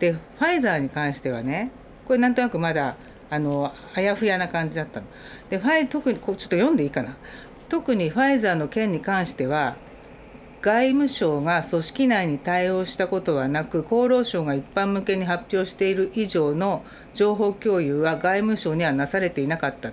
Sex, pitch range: female, 165-215 Hz